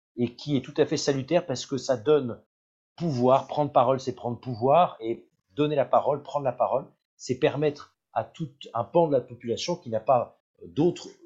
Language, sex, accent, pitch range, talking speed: French, male, French, 110-140 Hz, 195 wpm